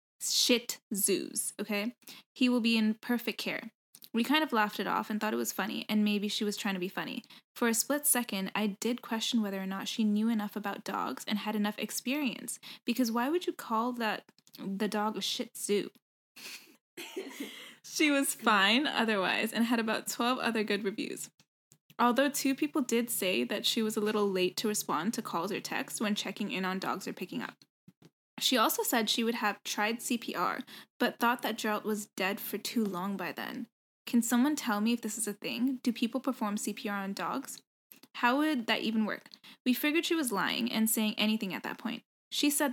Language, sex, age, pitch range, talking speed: English, female, 10-29, 210-245 Hz, 205 wpm